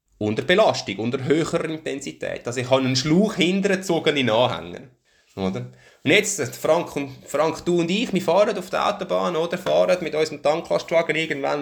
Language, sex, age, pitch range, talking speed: German, male, 20-39, 120-170 Hz, 175 wpm